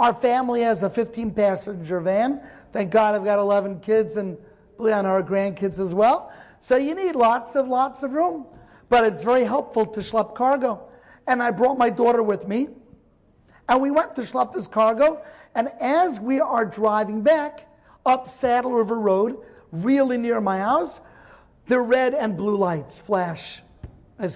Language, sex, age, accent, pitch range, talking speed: English, male, 50-69, American, 205-255 Hz, 165 wpm